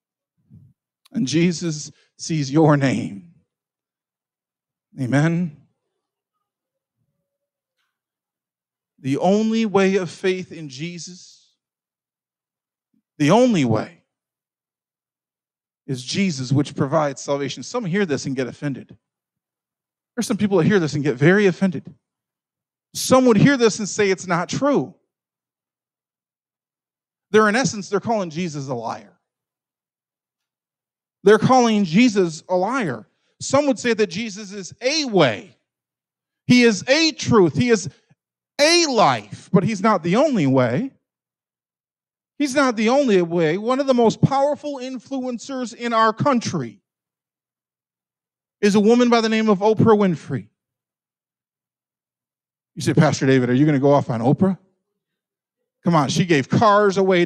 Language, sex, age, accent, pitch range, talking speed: English, male, 40-59, American, 150-230 Hz, 130 wpm